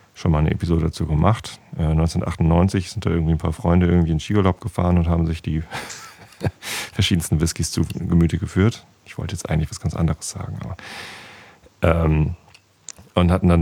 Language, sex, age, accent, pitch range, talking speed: German, male, 40-59, German, 85-100 Hz, 180 wpm